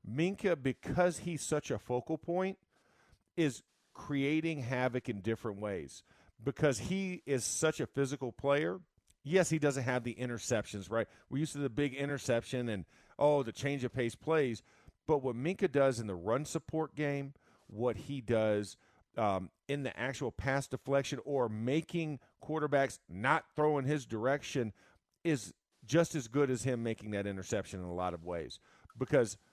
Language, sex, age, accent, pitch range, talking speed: English, male, 50-69, American, 110-150 Hz, 165 wpm